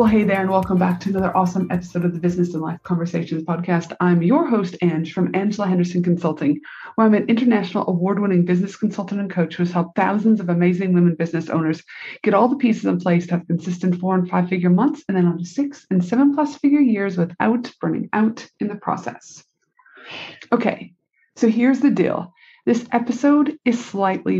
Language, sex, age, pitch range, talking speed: English, female, 30-49, 175-225 Hz, 190 wpm